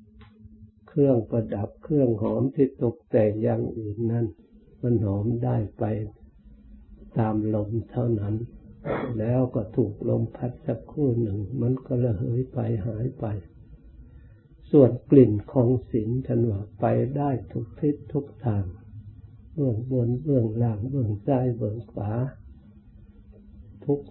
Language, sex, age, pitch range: Thai, male, 60-79, 105-125 Hz